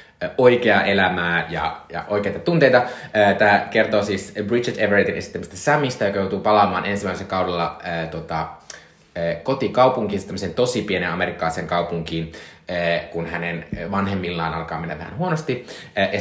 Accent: native